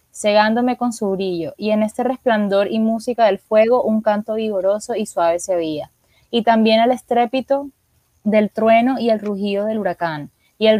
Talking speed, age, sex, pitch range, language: 180 wpm, 20-39, female, 195-235 Hz, Spanish